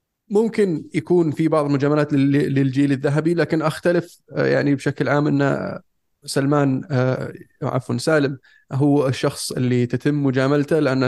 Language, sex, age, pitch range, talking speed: Arabic, male, 20-39, 130-150 Hz, 120 wpm